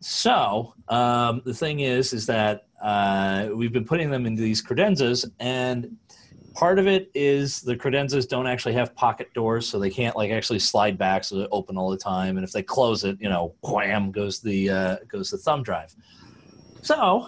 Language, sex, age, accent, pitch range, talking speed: English, male, 30-49, American, 115-155 Hz, 195 wpm